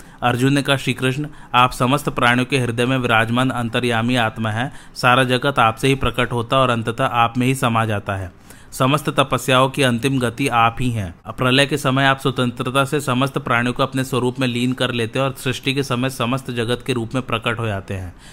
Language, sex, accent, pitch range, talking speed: Hindi, male, native, 120-135 Hz, 215 wpm